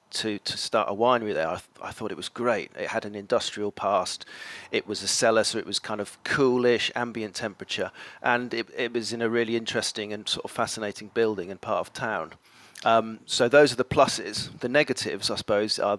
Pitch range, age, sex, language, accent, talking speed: 105-120 Hz, 40-59, male, English, British, 220 wpm